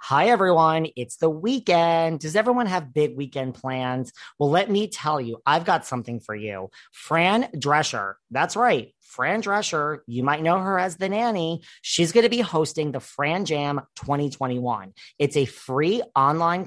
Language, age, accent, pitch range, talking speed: English, 40-59, American, 130-170 Hz, 170 wpm